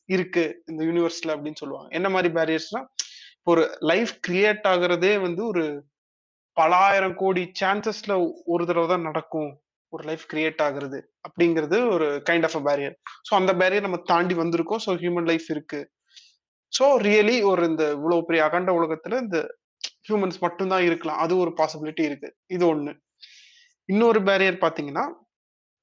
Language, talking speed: Tamil, 135 wpm